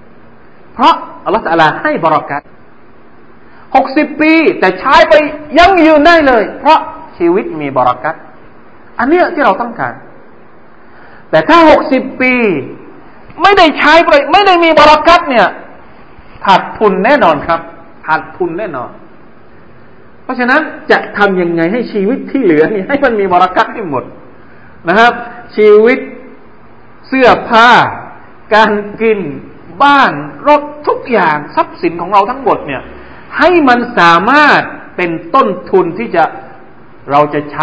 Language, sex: Thai, male